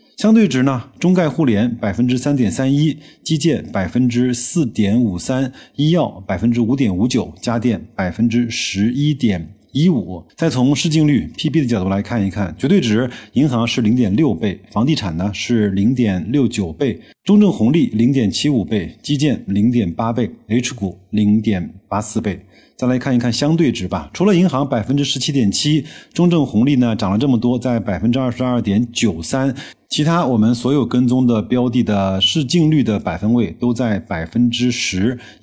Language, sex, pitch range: Chinese, male, 105-135 Hz